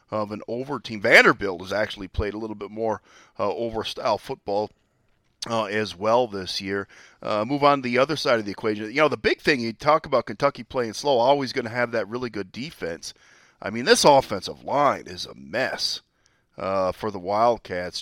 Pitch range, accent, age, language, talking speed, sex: 105-130 Hz, American, 40-59, English, 205 wpm, male